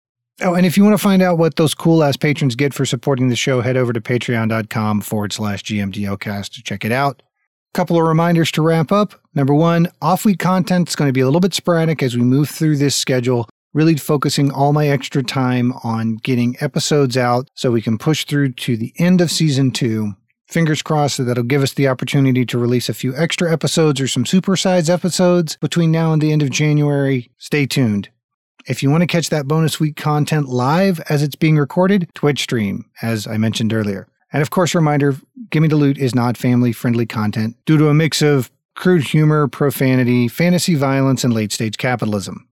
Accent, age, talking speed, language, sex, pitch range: American, 40-59, 205 wpm, English, male, 125-155 Hz